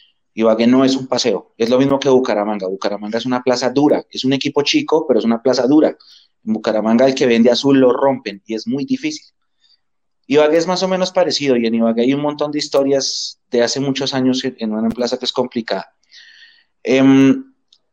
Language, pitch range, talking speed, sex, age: Spanish, 115-150 Hz, 205 wpm, male, 30-49